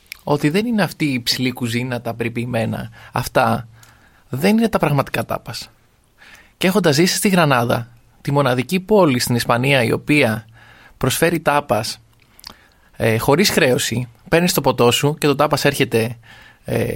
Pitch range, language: 120-150 Hz, Greek